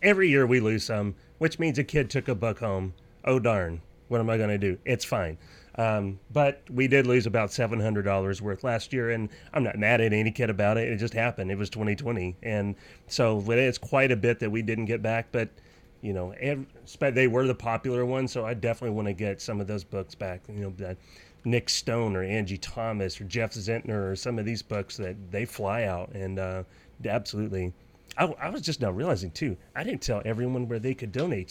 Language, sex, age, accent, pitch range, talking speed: English, male, 30-49, American, 100-125 Hz, 220 wpm